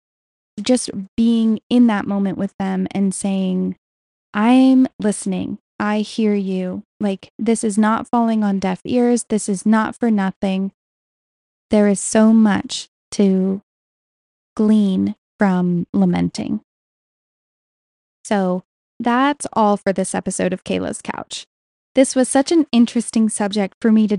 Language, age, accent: English, 10-29, American